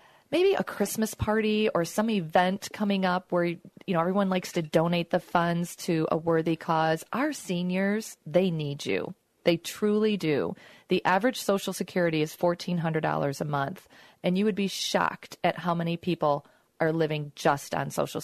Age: 40-59